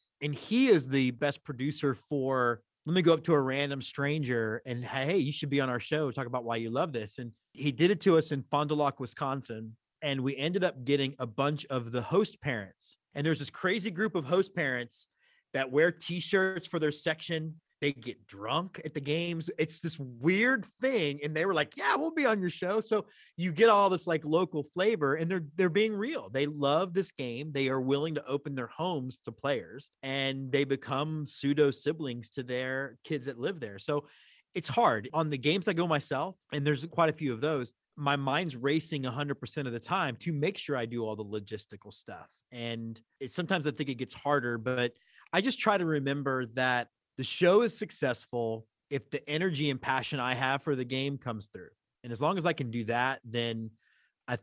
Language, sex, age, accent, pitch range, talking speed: English, male, 30-49, American, 130-160 Hz, 215 wpm